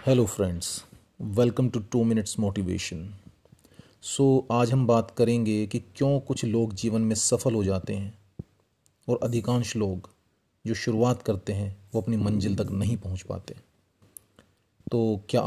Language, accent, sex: Hindi, native, male